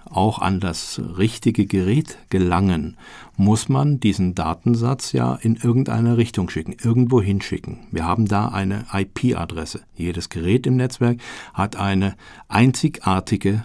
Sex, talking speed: male, 130 wpm